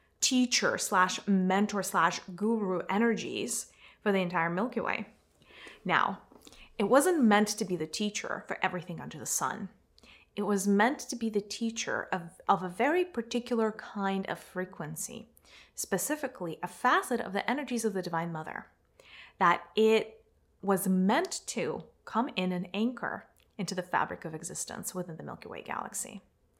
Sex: female